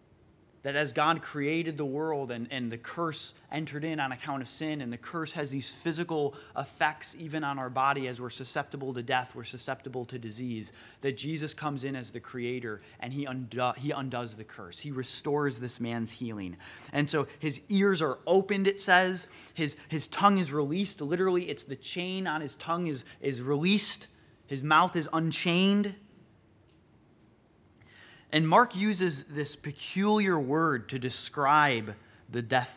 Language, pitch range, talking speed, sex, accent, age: English, 125-165 Hz, 170 wpm, male, American, 20-39